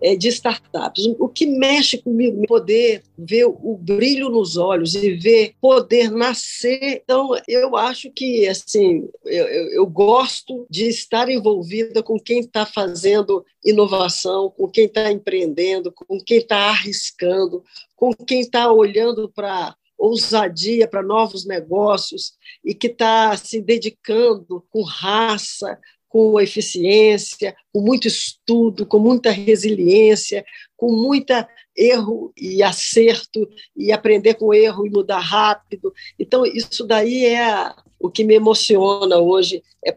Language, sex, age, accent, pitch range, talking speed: Portuguese, female, 50-69, Brazilian, 205-265 Hz, 130 wpm